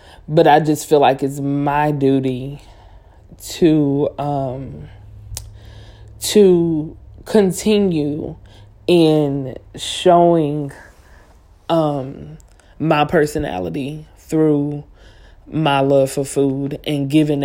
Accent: American